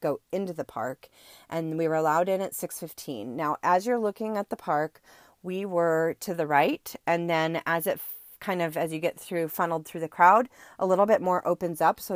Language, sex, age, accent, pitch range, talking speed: English, female, 30-49, American, 160-195 Hz, 225 wpm